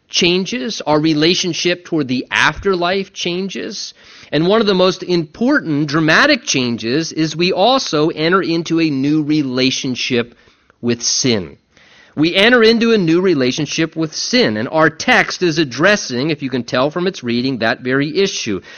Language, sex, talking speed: English, male, 155 wpm